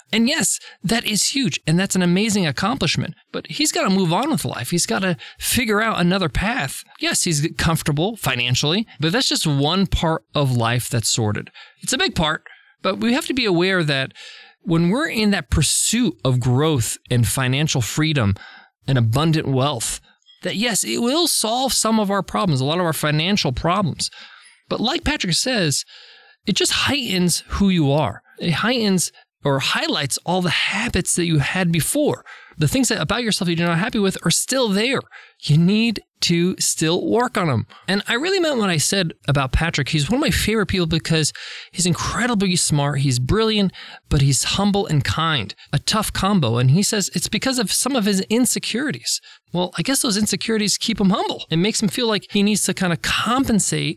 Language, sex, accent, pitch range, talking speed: English, male, American, 150-210 Hz, 195 wpm